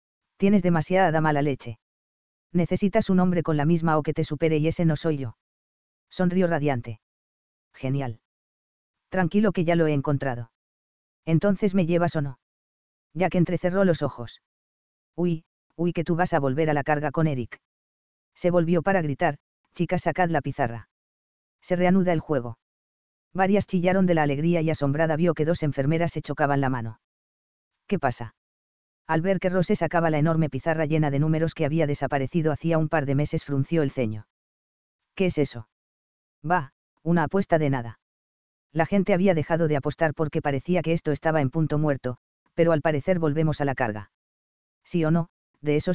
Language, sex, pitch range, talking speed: English, female, 110-170 Hz, 175 wpm